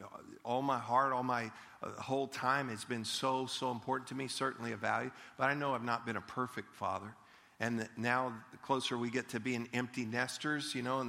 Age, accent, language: 50-69, American, English